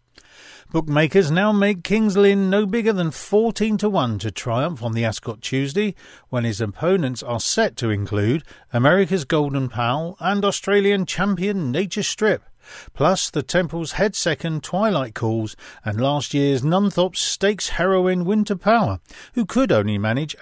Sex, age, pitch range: male, 40-59, 120-200 Hz